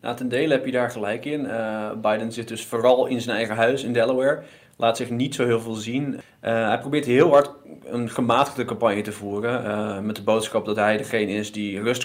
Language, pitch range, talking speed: Dutch, 105-125 Hz, 225 wpm